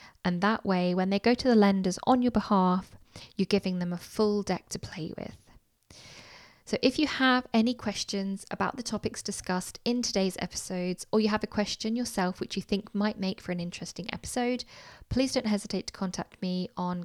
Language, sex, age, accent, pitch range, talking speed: English, female, 10-29, British, 180-225 Hz, 195 wpm